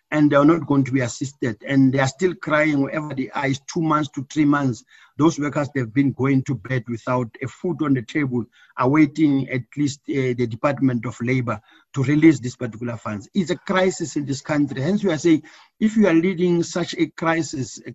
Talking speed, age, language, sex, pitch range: 220 wpm, 50-69, English, male, 130-155 Hz